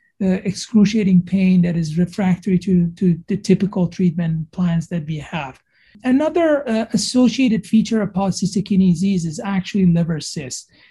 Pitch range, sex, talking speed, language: 175-215 Hz, male, 150 wpm, English